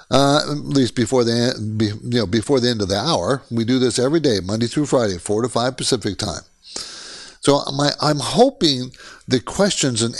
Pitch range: 115-150 Hz